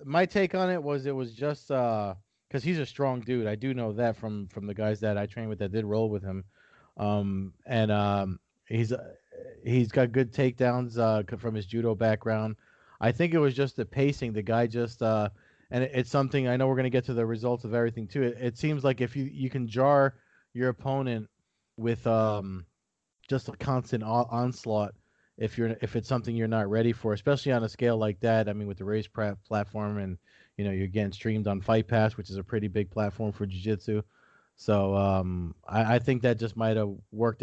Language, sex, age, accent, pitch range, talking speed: English, male, 30-49, American, 105-130 Hz, 225 wpm